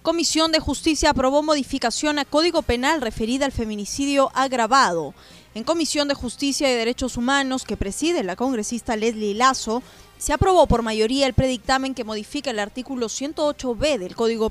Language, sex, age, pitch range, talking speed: Spanish, female, 20-39, 225-280 Hz, 155 wpm